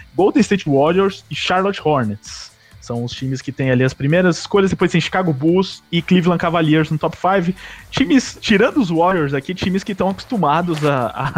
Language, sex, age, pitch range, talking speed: English, male, 20-39, 135-175 Hz, 190 wpm